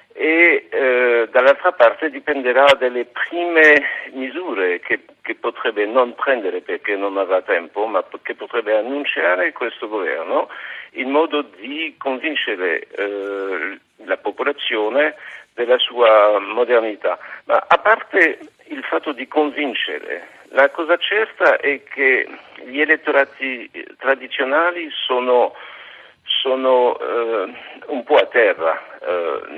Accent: native